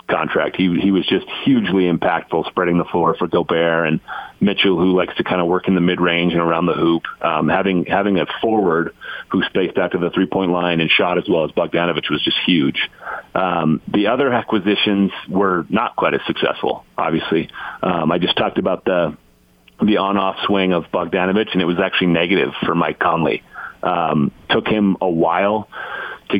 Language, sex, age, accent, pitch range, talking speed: English, male, 40-59, American, 85-105 Hz, 190 wpm